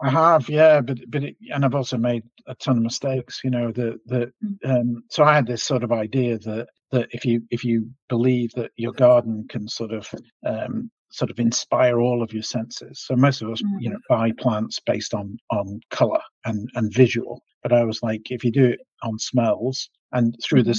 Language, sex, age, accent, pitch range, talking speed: English, male, 50-69, British, 110-125 Hz, 215 wpm